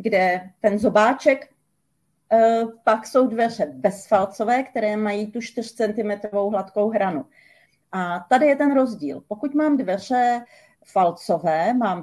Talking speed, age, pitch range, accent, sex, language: 120 wpm, 30-49, 185-230 Hz, native, female, Czech